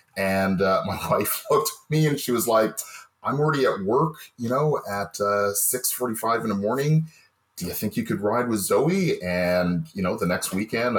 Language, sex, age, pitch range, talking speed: English, male, 30-49, 90-115 Hz, 200 wpm